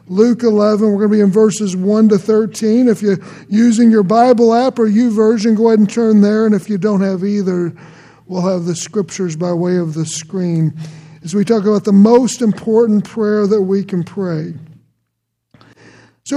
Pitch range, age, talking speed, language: 170-220 Hz, 50-69, 190 wpm, English